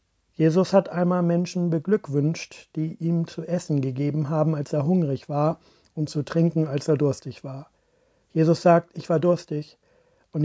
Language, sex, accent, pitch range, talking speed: German, male, German, 140-170 Hz, 160 wpm